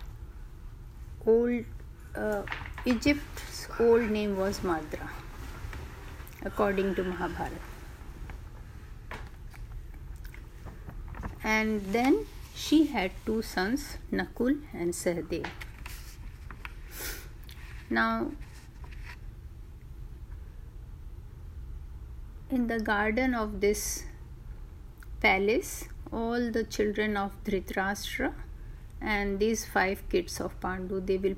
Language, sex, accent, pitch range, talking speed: Hindi, female, native, 190-235 Hz, 75 wpm